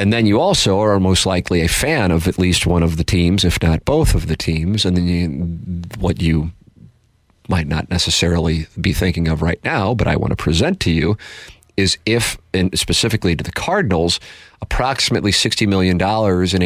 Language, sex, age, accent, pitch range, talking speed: English, male, 40-59, American, 85-105 Hz, 185 wpm